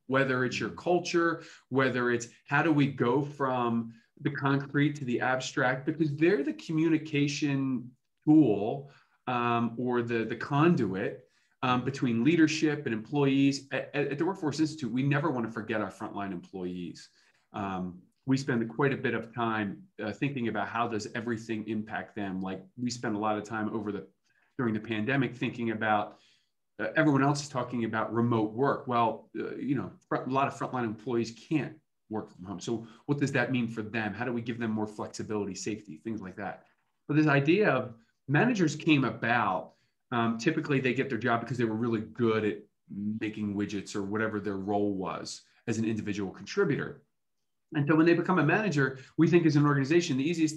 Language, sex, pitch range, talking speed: English, male, 110-145 Hz, 185 wpm